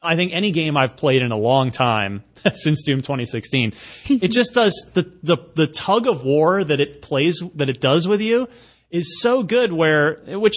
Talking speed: 200 wpm